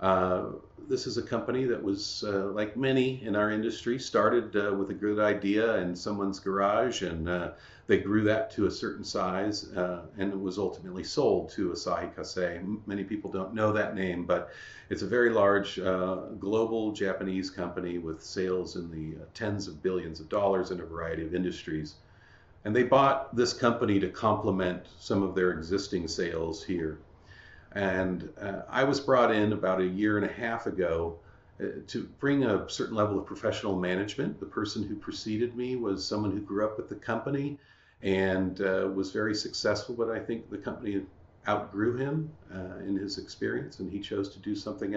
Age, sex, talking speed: 50-69, male, 185 wpm